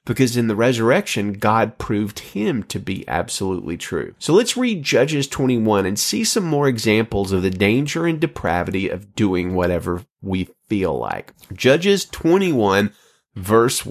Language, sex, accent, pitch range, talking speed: English, male, American, 100-140 Hz, 150 wpm